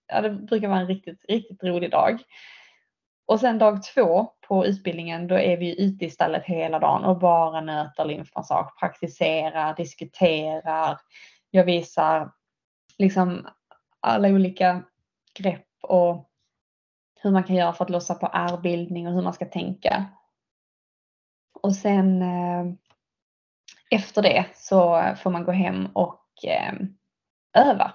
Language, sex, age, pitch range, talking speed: Swedish, female, 20-39, 175-200 Hz, 135 wpm